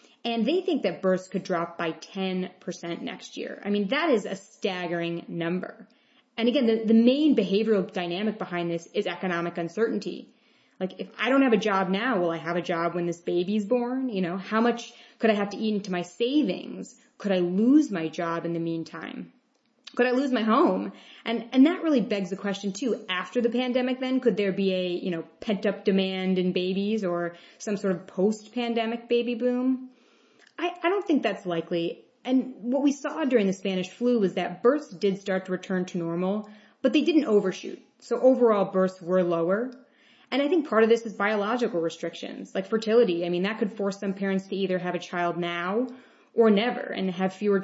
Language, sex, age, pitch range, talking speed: English, female, 20-39, 185-240 Hz, 205 wpm